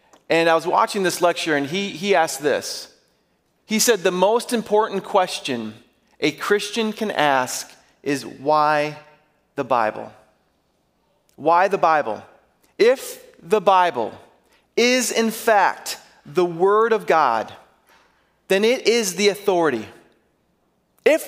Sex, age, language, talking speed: male, 30-49, English, 125 wpm